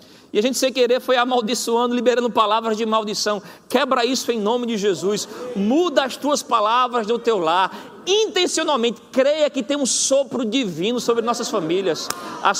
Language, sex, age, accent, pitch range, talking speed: Portuguese, male, 40-59, Brazilian, 205-255 Hz, 165 wpm